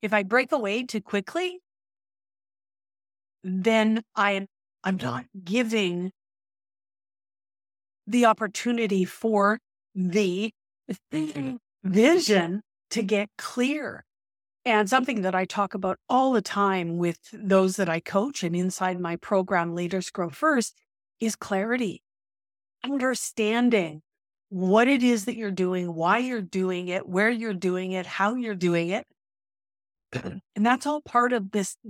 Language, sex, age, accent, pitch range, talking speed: English, female, 50-69, American, 170-230 Hz, 125 wpm